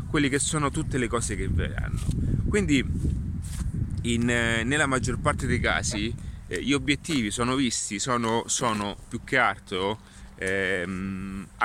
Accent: native